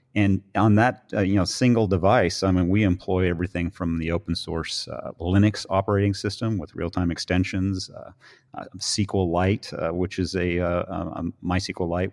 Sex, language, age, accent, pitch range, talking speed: male, English, 40-59, American, 90-105 Hz, 175 wpm